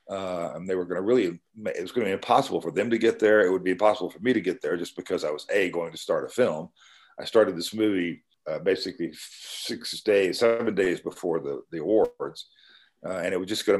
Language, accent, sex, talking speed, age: English, American, male, 240 wpm, 50-69